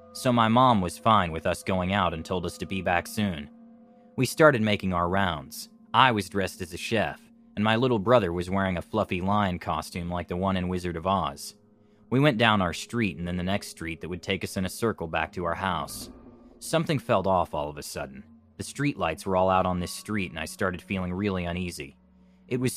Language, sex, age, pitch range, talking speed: English, male, 20-39, 85-110 Hz, 230 wpm